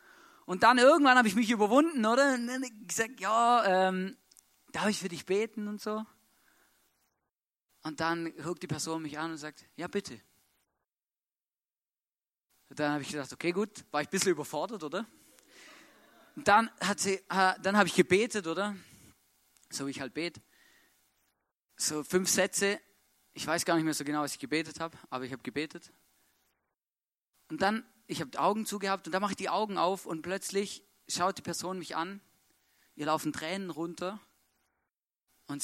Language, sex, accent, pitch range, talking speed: German, male, German, 135-195 Hz, 170 wpm